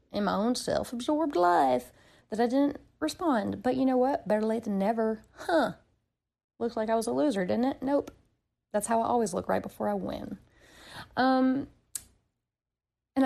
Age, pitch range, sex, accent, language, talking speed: 30-49, 200-255 Hz, female, American, English, 170 wpm